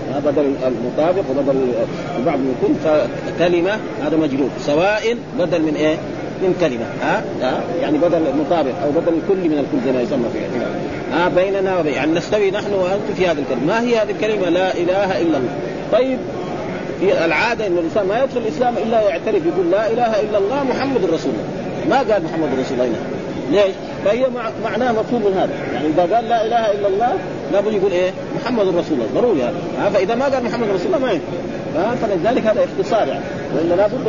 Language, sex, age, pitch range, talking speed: Arabic, male, 40-59, 170-220 Hz, 185 wpm